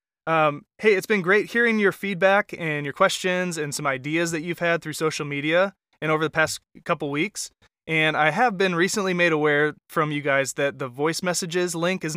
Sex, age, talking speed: male, 20-39, 205 wpm